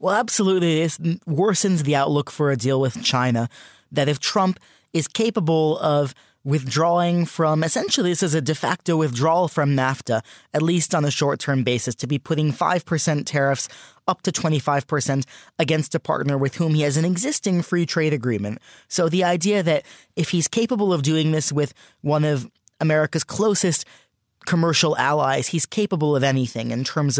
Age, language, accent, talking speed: 20-39, English, American, 170 wpm